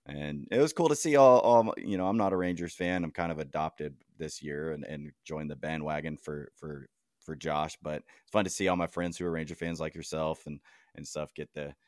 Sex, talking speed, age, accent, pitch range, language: male, 250 wpm, 20-39, American, 75-85 Hz, English